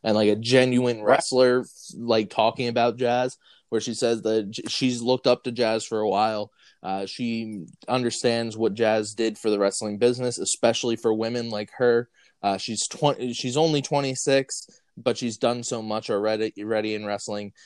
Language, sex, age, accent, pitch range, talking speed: English, male, 20-39, American, 105-125 Hz, 175 wpm